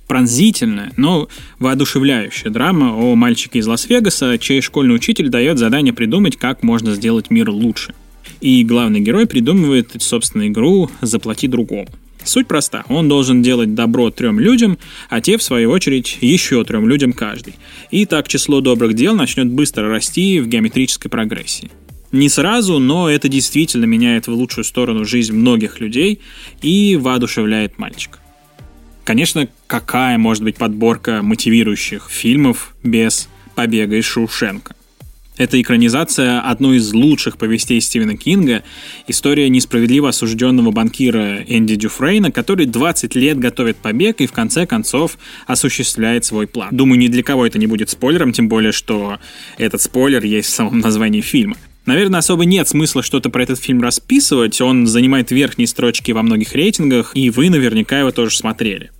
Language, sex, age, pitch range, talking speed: Russian, male, 20-39, 115-190 Hz, 150 wpm